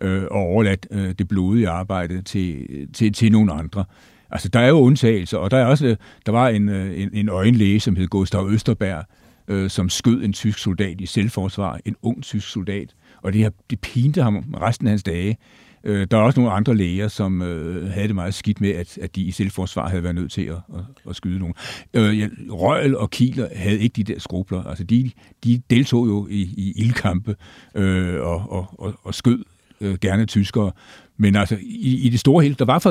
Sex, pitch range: male, 100-120 Hz